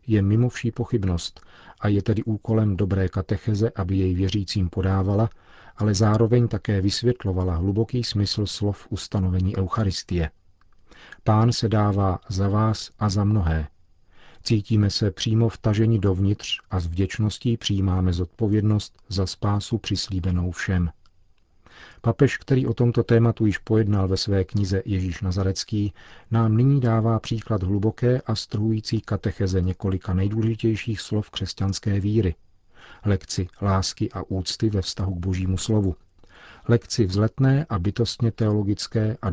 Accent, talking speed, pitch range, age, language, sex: native, 130 wpm, 95-110 Hz, 40-59, Czech, male